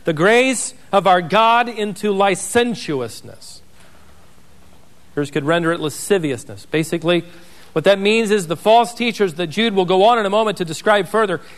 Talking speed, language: 160 wpm, English